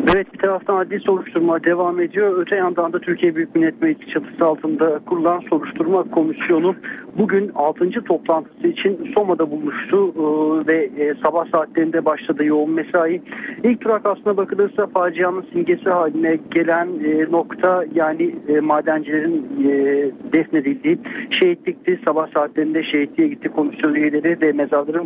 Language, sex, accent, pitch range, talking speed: Turkish, male, native, 155-205 Hz, 135 wpm